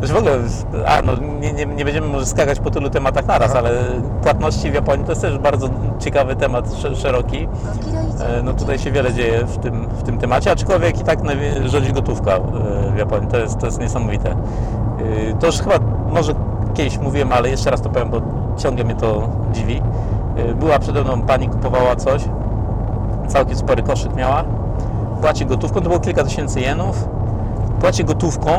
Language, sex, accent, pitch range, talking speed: Polish, male, native, 105-120 Hz, 170 wpm